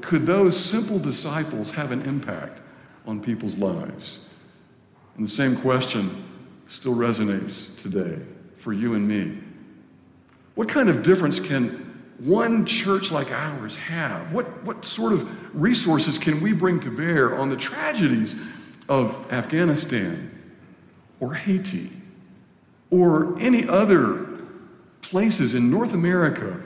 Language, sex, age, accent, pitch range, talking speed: English, male, 60-79, American, 120-180 Hz, 125 wpm